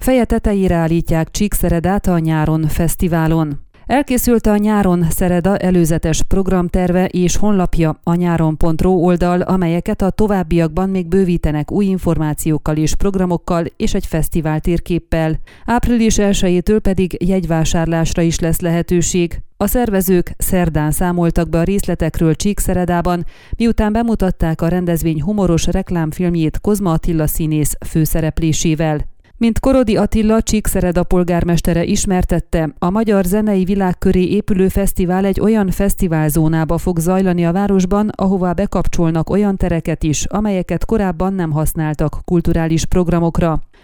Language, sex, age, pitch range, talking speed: Hungarian, female, 30-49, 165-200 Hz, 115 wpm